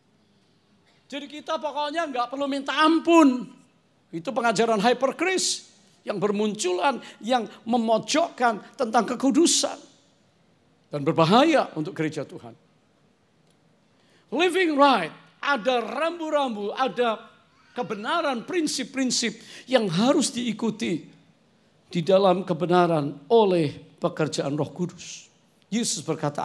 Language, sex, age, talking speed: English, male, 50-69, 90 wpm